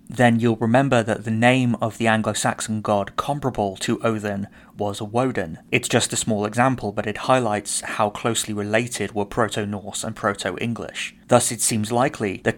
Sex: male